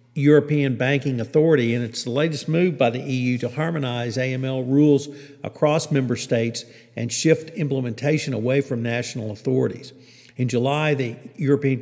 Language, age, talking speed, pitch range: English, 50-69, 145 wpm, 120-145 Hz